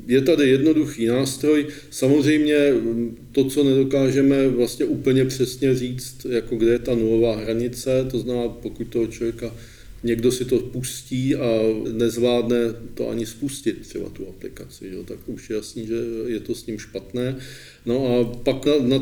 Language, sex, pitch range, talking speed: Czech, male, 115-130 Hz, 160 wpm